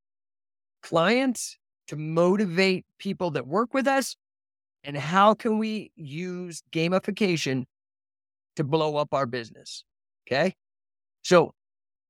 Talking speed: 105 wpm